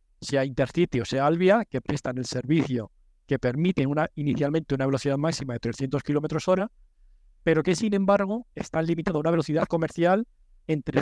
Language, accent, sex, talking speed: Spanish, Spanish, male, 170 wpm